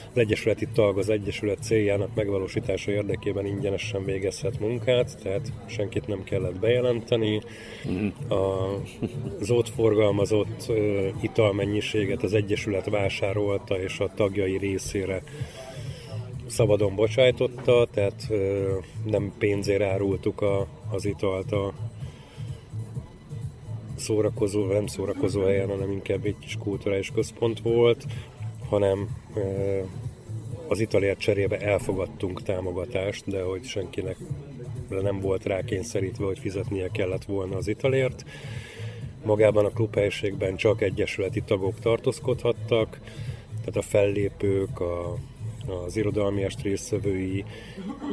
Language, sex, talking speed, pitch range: Hungarian, male, 105 wpm, 100-120 Hz